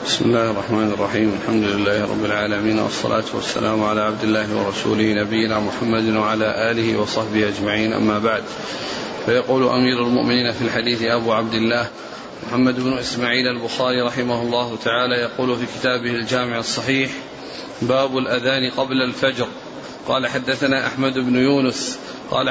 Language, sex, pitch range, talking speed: Arabic, male, 120-140 Hz, 140 wpm